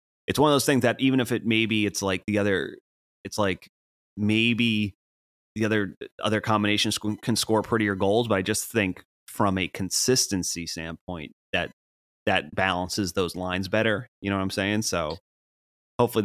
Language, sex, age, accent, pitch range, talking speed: English, male, 30-49, American, 85-100 Hz, 170 wpm